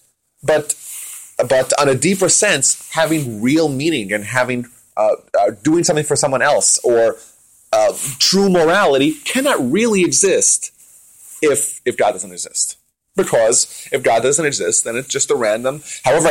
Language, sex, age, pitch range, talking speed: English, male, 30-49, 120-160 Hz, 150 wpm